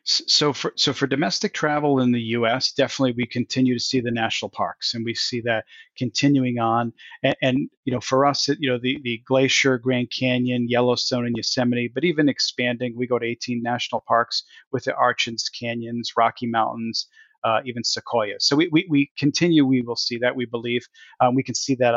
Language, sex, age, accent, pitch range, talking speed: English, male, 40-59, American, 120-145 Hz, 200 wpm